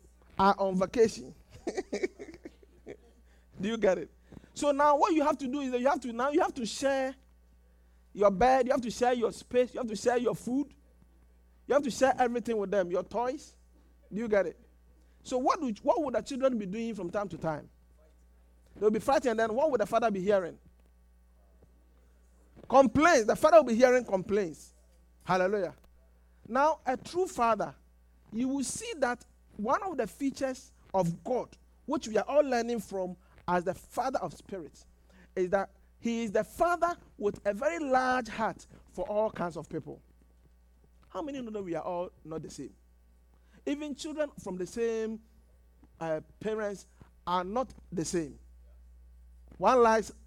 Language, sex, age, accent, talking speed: English, male, 50-69, Nigerian, 175 wpm